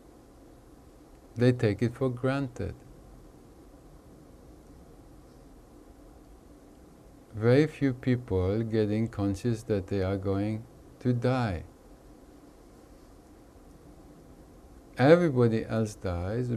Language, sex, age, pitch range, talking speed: English, male, 50-69, 100-125 Hz, 70 wpm